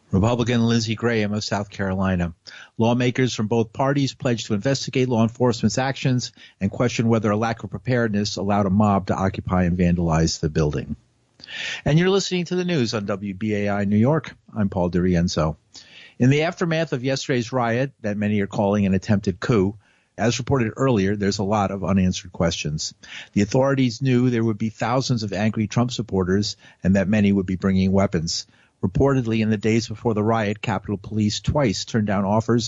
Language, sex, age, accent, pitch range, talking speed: English, male, 50-69, American, 100-125 Hz, 180 wpm